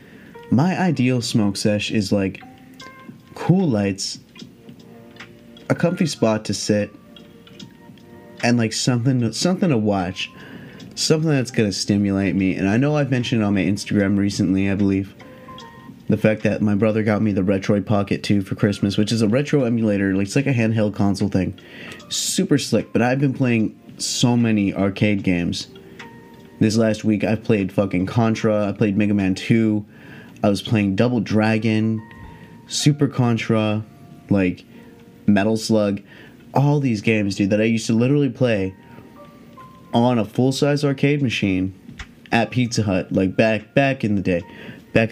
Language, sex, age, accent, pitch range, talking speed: English, male, 20-39, American, 100-115 Hz, 155 wpm